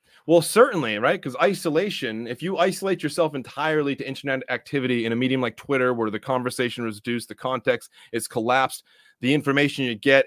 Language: English